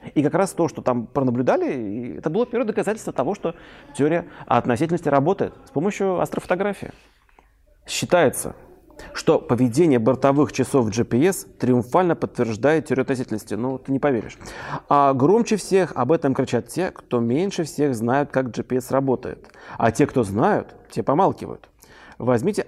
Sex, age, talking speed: male, 30-49, 145 wpm